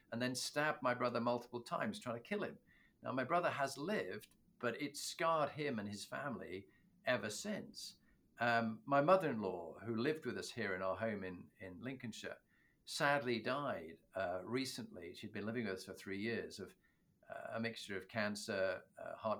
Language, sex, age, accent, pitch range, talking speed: English, male, 50-69, British, 105-135 Hz, 185 wpm